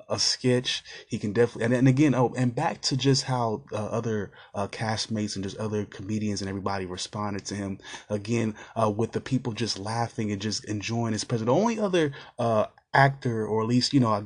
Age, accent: 20-39, American